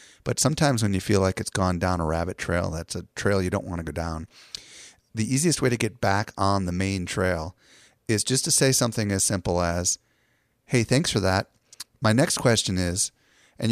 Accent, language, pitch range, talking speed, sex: American, English, 95-115 Hz, 210 wpm, male